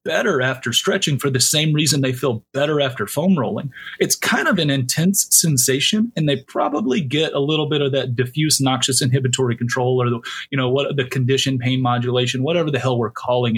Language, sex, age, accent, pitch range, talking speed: English, male, 30-49, American, 125-150 Hz, 200 wpm